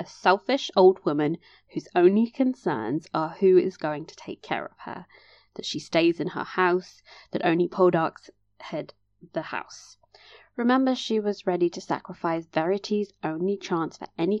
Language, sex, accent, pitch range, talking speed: English, female, British, 155-205 Hz, 165 wpm